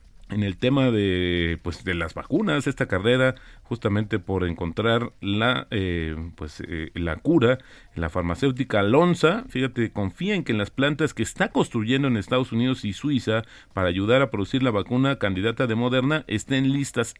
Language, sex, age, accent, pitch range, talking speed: Spanish, male, 40-59, Mexican, 100-130 Hz, 165 wpm